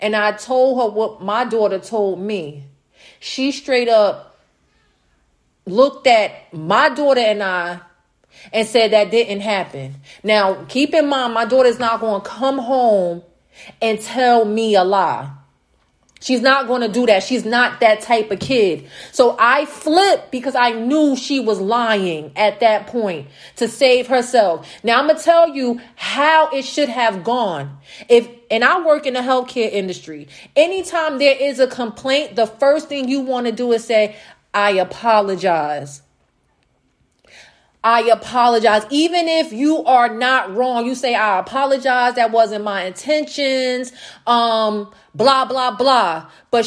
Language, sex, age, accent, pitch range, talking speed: English, female, 30-49, American, 215-270 Hz, 155 wpm